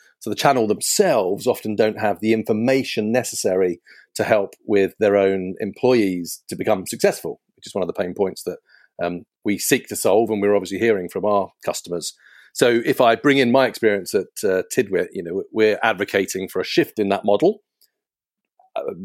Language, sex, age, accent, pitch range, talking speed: English, male, 40-59, British, 100-140 Hz, 190 wpm